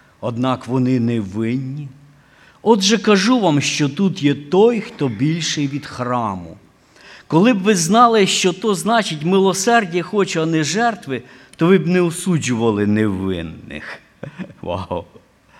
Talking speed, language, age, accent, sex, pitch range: 125 wpm, Ukrainian, 50-69, native, male, 110-160 Hz